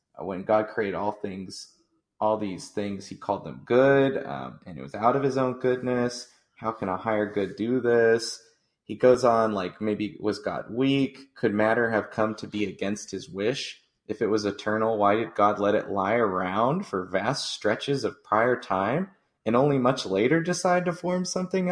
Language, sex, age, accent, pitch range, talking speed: English, male, 20-39, American, 100-130 Hz, 195 wpm